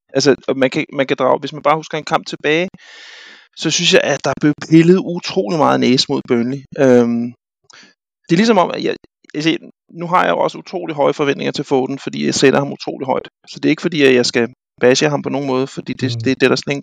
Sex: male